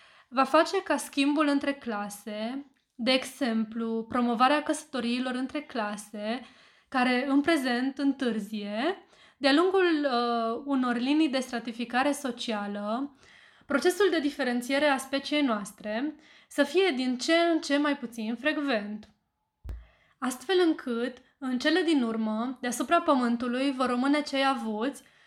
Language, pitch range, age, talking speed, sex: Romanian, 230-280 Hz, 20-39, 120 wpm, female